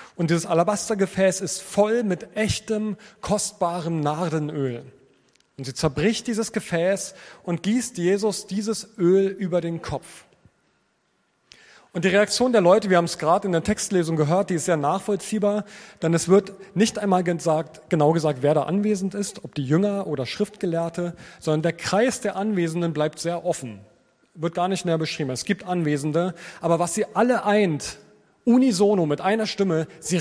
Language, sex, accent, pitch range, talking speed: German, male, German, 165-205 Hz, 160 wpm